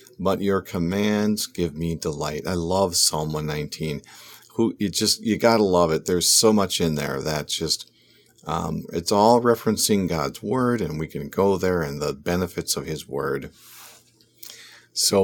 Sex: male